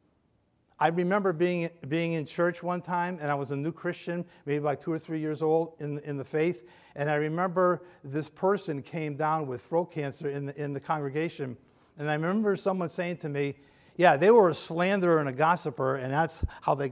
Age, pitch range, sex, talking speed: 50-69, 145-180 Hz, male, 210 wpm